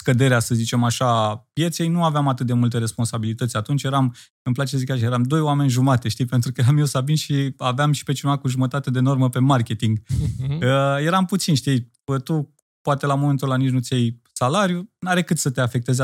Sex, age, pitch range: male, 20-39, 125-160 Hz